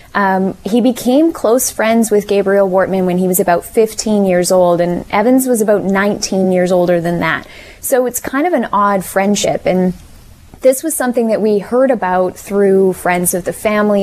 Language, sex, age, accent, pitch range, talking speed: English, female, 20-39, American, 185-230 Hz, 190 wpm